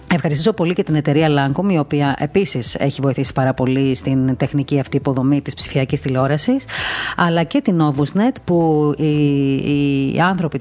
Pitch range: 140-190 Hz